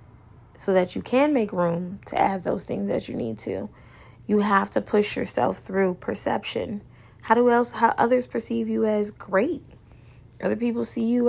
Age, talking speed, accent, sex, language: 20-39, 185 wpm, American, female, English